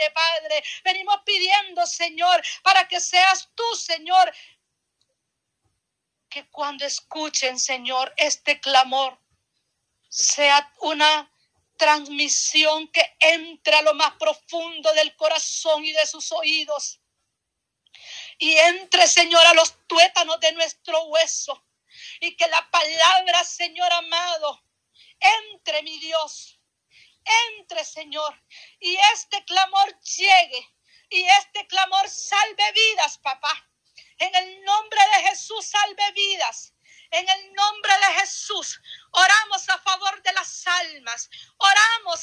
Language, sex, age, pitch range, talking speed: Spanish, female, 40-59, 310-385 Hz, 110 wpm